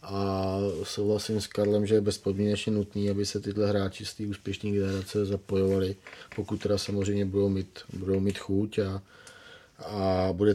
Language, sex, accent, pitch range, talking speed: Czech, male, native, 100-110 Hz, 155 wpm